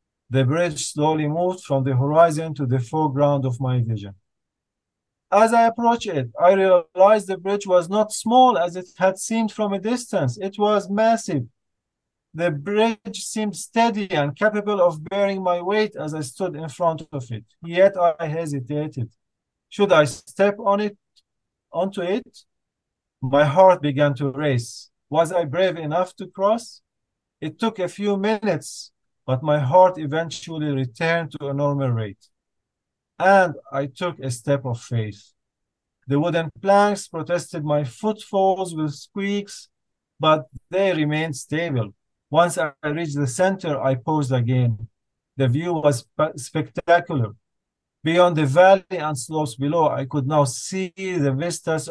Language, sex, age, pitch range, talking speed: English, male, 40-59, 135-190 Hz, 150 wpm